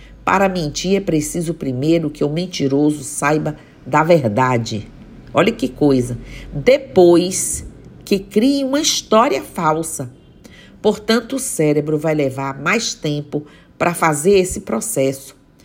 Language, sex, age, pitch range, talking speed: Portuguese, female, 50-69, 145-185 Hz, 120 wpm